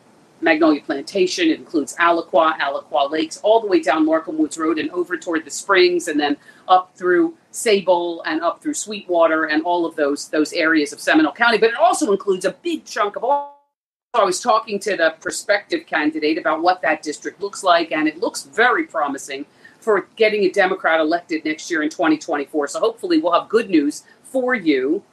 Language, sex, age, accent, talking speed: English, female, 40-59, American, 195 wpm